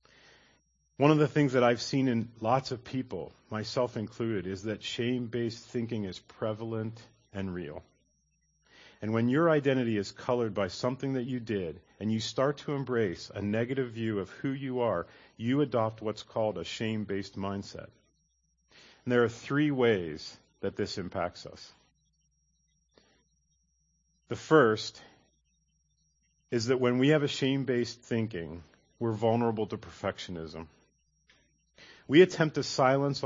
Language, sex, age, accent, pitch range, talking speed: English, male, 40-59, American, 95-130 Hz, 140 wpm